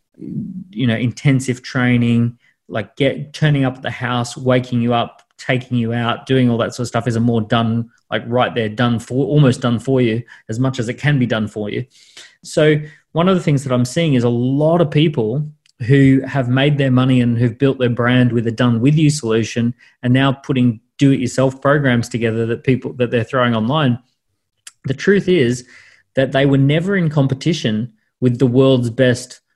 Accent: Australian